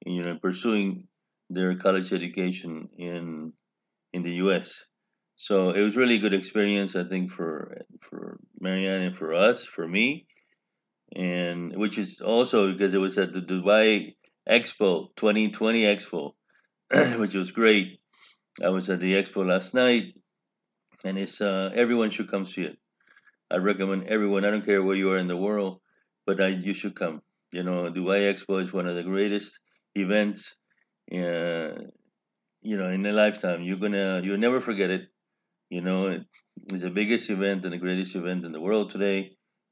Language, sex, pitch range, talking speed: English, male, 90-105 Hz, 170 wpm